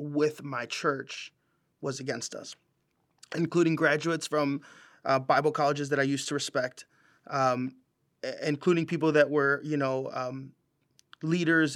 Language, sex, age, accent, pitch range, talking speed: English, male, 30-49, American, 145-170 Hz, 135 wpm